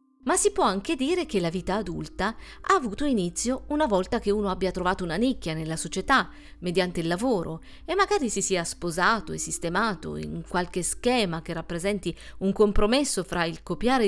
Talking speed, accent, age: 180 wpm, native, 40-59